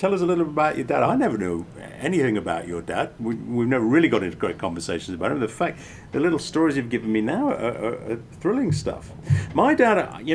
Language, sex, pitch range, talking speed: English, male, 100-135 Hz, 240 wpm